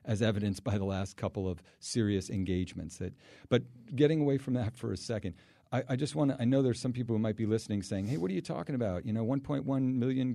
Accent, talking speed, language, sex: American, 255 wpm, English, male